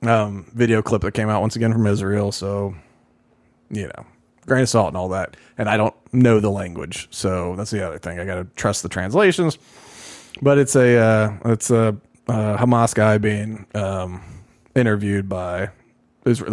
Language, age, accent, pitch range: English, 20-39, American, 100-120 Hz